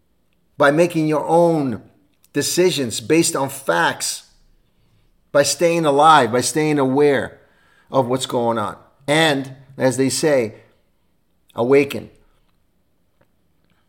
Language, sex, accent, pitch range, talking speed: English, male, American, 125-160 Hz, 100 wpm